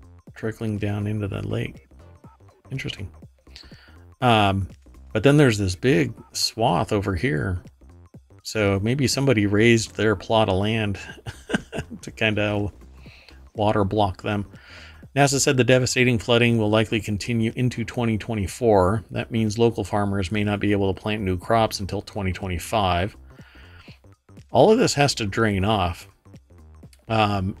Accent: American